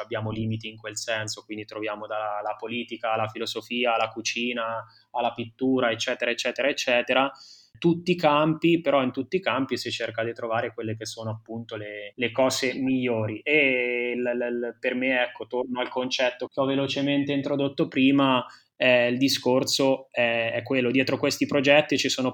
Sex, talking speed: male, 165 wpm